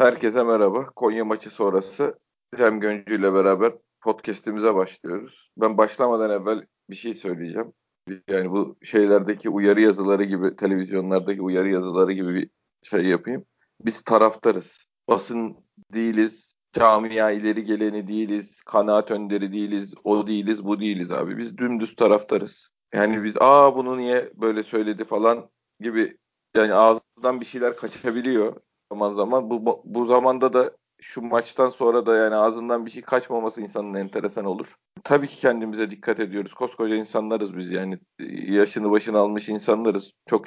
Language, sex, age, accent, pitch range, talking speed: Turkish, male, 40-59, native, 105-120 Hz, 140 wpm